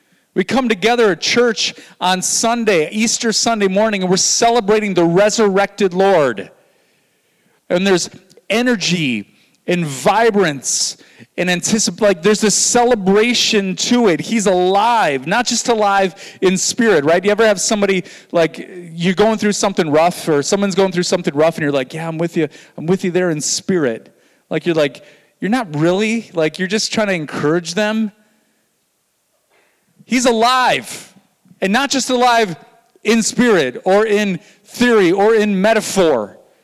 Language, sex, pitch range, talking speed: English, male, 180-225 Hz, 155 wpm